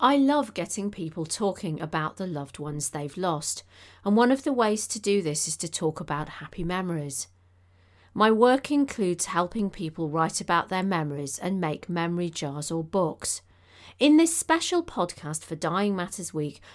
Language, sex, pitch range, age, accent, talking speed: English, female, 155-215 Hz, 40-59, British, 170 wpm